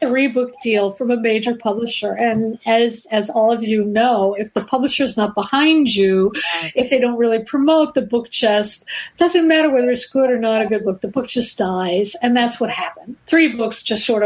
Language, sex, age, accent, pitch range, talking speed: English, female, 50-69, American, 220-300 Hz, 210 wpm